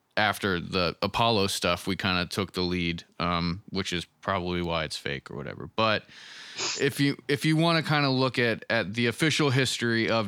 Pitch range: 100-120 Hz